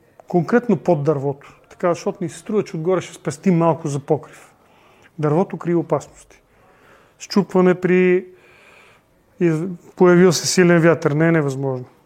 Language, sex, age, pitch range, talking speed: Bulgarian, male, 40-59, 155-185 Hz, 135 wpm